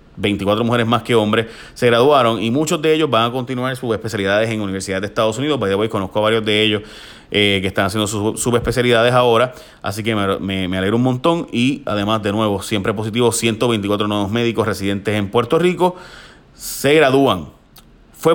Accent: Venezuelan